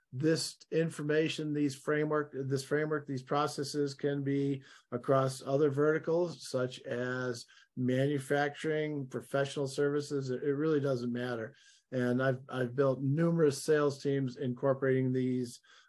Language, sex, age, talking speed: English, male, 50-69, 115 wpm